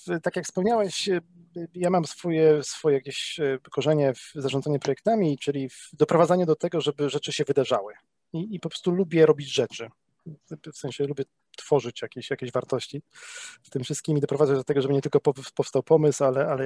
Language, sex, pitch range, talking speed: Polish, male, 130-170 Hz, 175 wpm